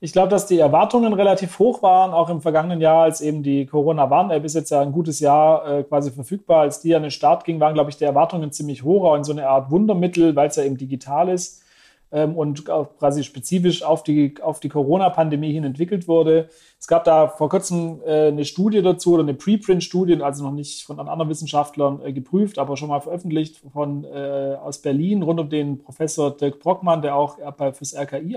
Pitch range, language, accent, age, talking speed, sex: 145-170 Hz, German, German, 40-59, 205 wpm, male